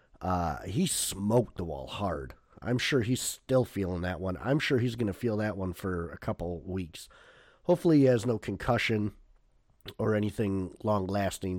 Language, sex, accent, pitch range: English, male, American, 95-130 Hz